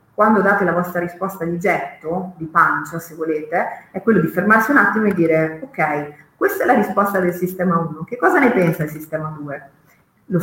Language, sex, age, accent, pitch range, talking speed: Italian, female, 30-49, native, 160-205 Hz, 200 wpm